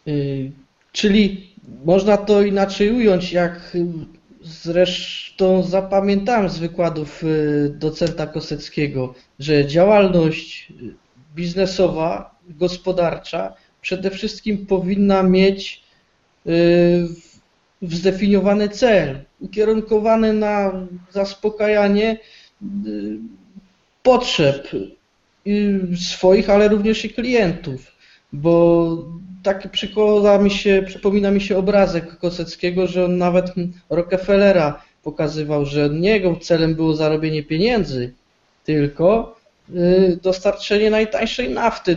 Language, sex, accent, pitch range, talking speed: Polish, male, native, 165-205 Hz, 80 wpm